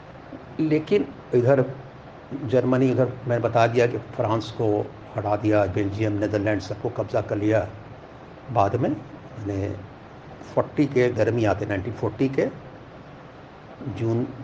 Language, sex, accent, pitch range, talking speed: Hindi, male, native, 110-130 Hz, 115 wpm